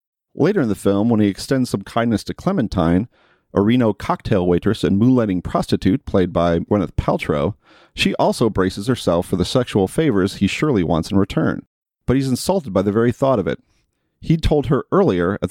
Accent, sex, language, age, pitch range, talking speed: American, male, English, 40-59, 95-125 Hz, 195 wpm